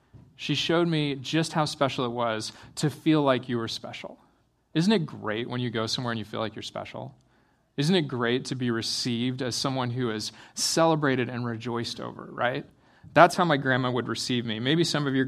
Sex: male